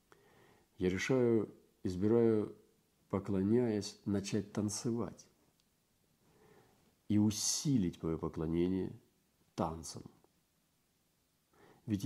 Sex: male